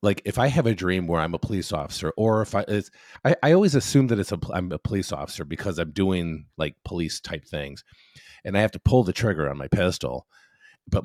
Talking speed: 240 wpm